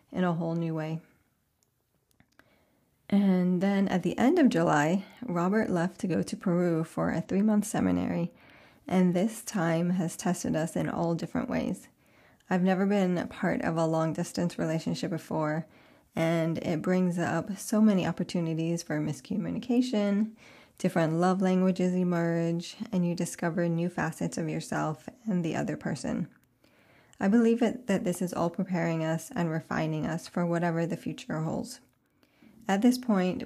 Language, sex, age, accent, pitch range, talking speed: English, female, 20-39, American, 170-195 Hz, 160 wpm